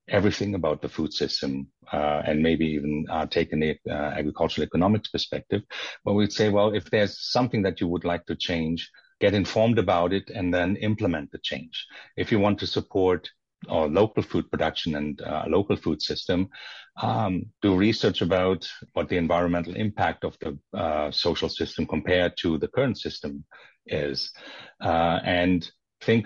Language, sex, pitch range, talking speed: English, male, 80-95 Hz, 170 wpm